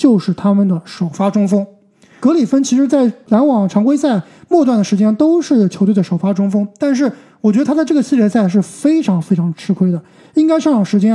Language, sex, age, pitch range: Chinese, male, 20-39, 200-270 Hz